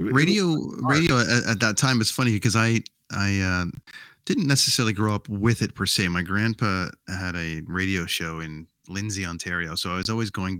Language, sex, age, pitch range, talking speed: English, male, 30-49, 90-110 Hz, 185 wpm